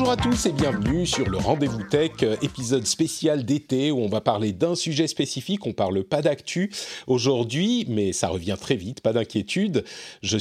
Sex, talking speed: male, 185 wpm